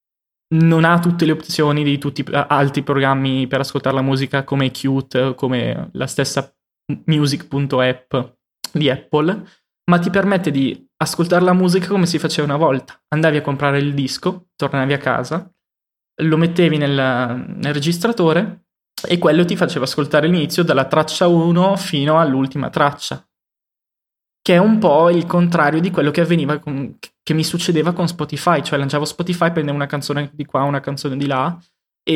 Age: 20-39